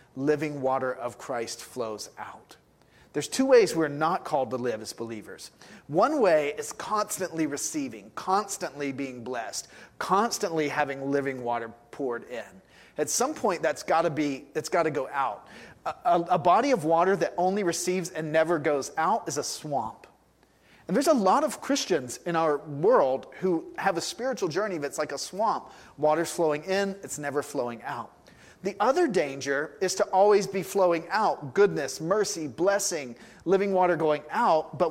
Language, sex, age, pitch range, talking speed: English, male, 30-49, 145-185 Hz, 165 wpm